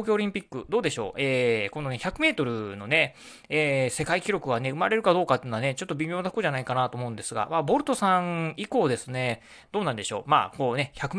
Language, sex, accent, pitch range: Japanese, male, native, 120-175 Hz